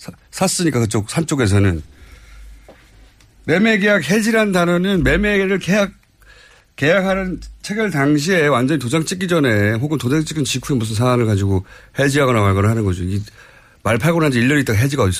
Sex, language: male, Korean